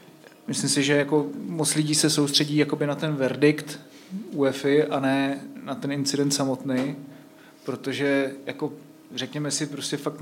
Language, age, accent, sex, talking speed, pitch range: Czech, 30-49, native, male, 140 wpm, 140-160 Hz